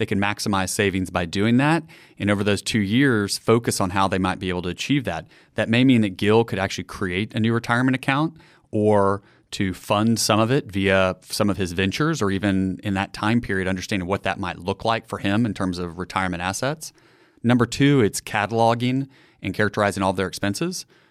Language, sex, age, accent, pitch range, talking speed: English, male, 30-49, American, 95-115 Hz, 210 wpm